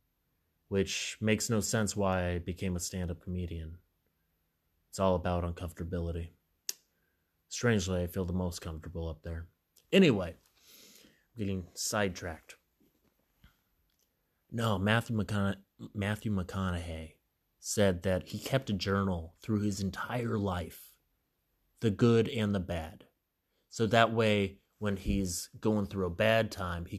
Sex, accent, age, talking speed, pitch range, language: male, American, 30-49, 125 wpm, 85-110 Hz, English